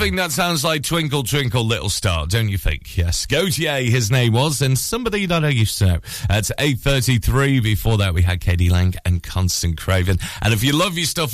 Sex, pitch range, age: male, 95-135 Hz, 30-49